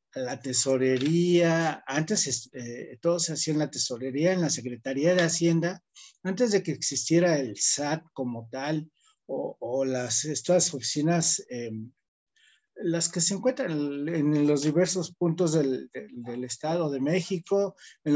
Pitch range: 135-175 Hz